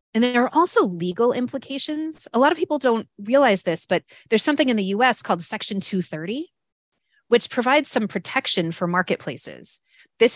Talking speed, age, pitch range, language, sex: 170 wpm, 30-49, 170-230 Hz, English, female